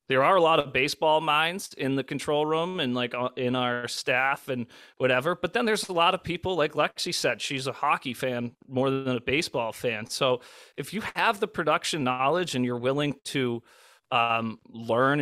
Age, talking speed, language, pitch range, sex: 30-49, 195 wpm, English, 125-150 Hz, male